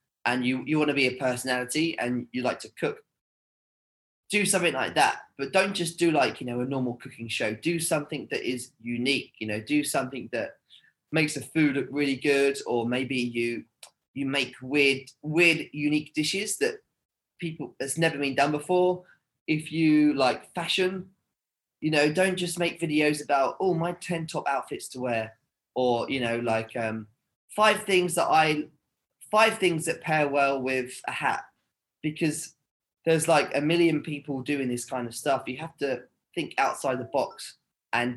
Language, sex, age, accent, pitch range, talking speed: English, male, 20-39, British, 125-160 Hz, 180 wpm